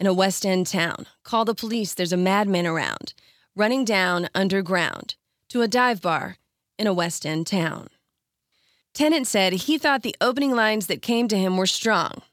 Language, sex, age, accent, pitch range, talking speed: English, female, 30-49, American, 185-240 Hz, 180 wpm